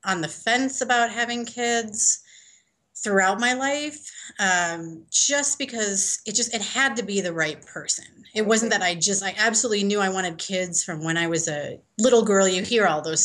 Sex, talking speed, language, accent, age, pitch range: female, 195 wpm, English, American, 30-49, 170-245 Hz